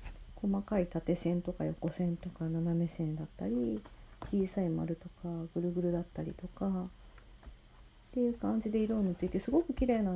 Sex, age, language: female, 40-59, Japanese